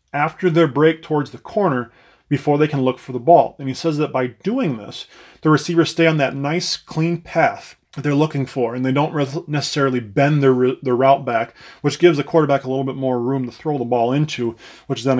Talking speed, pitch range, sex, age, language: 225 wpm, 125-145 Hz, male, 20-39, English